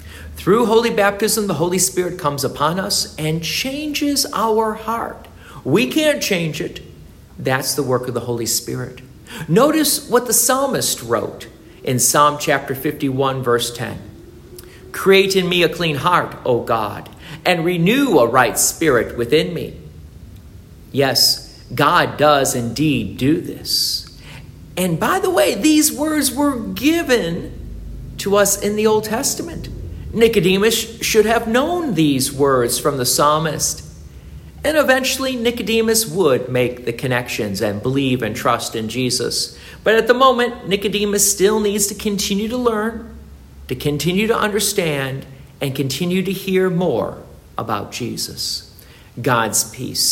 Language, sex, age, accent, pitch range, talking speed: English, male, 50-69, American, 125-215 Hz, 140 wpm